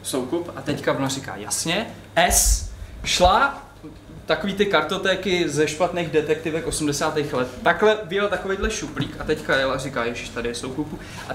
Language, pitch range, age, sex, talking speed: Czech, 150-225 Hz, 20-39, male, 160 wpm